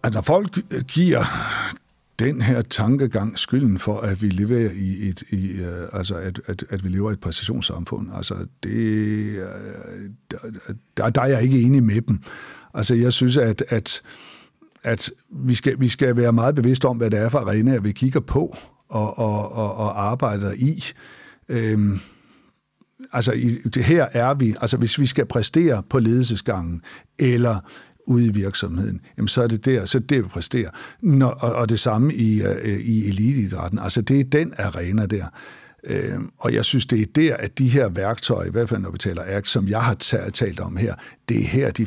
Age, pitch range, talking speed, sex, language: 60-79, 100-125 Hz, 190 wpm, male, Danish